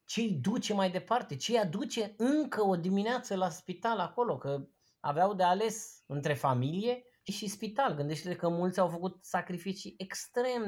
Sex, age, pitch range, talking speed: male, 20-39, 140-210 Hz, 170 wpm